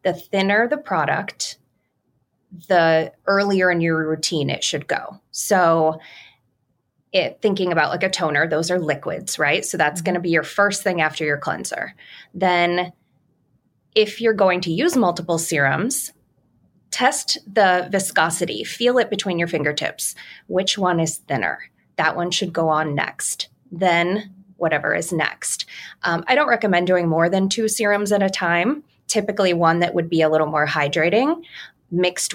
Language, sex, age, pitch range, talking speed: English, female, 20-39, 155-190 Hz, 155 wpm